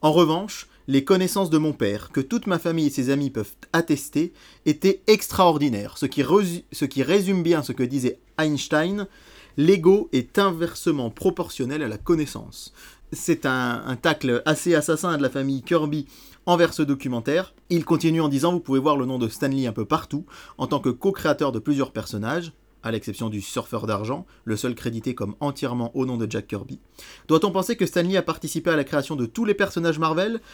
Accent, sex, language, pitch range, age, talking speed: French, male, French, 130-170 Hz, 30-49, 190 wpm